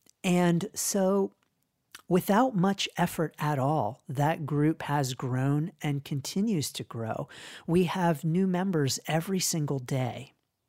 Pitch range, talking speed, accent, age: 140-175 Hz, 125 wpm, American, 40-59